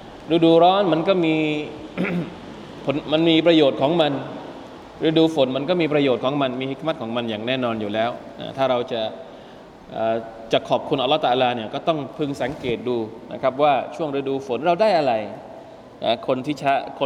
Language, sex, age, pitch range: Thai, male, 20-39, 120-155 Hz